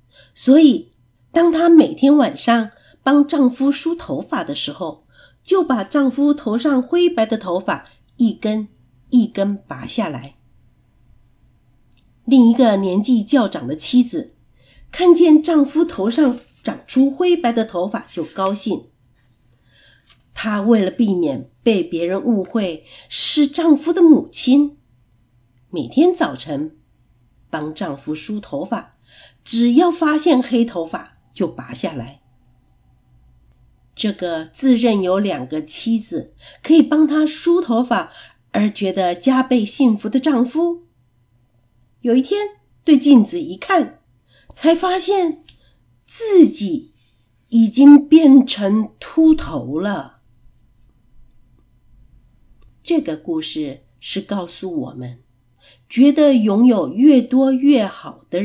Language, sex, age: Chinese, female, 50-69